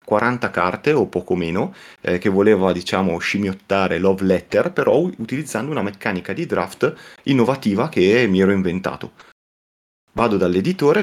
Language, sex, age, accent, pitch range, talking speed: Italian, male, 30-49, native, 90-110 Hz, 135 wpm